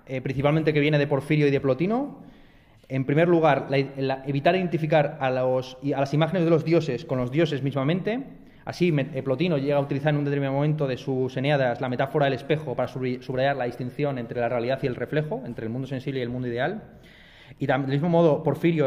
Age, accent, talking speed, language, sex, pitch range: 30-49, Spanish, 200 wpm, Spanish, male, 125-155 Hz